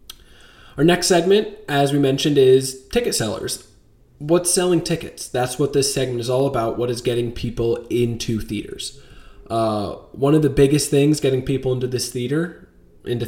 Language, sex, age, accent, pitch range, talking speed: English, male, 20-39, American, 115-135 Hz, 165 wpm